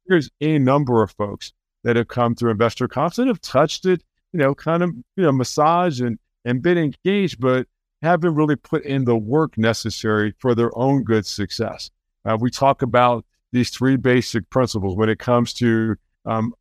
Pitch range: 115-150 Hz